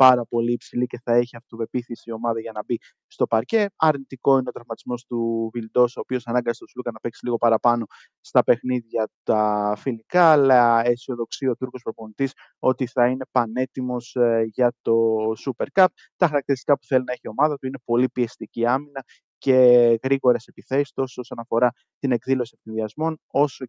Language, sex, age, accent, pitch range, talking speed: Greek, male, 20-39, native, 115-135 Hz, 175 wpm